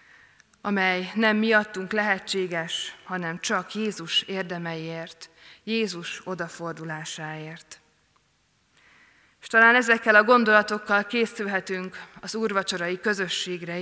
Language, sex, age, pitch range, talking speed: Hungarian, female, 20-39, 170-210 Hz, 80 wpm